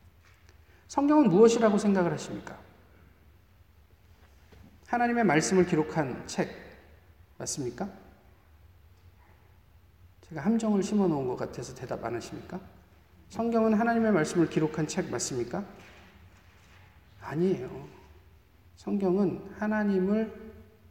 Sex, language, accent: male, Korean, native